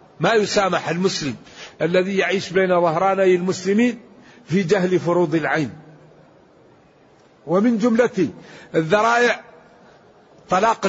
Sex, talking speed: male, 90 wpm